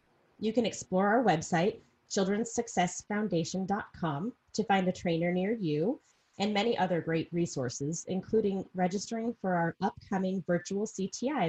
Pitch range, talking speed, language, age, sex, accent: 165-220 Hz, 125 wpm, English, 30-49, female, American